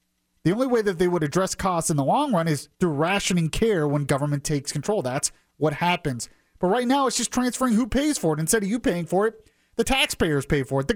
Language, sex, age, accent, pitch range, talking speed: English, male, 30-49, American, 140-200 Hz, 245 wpm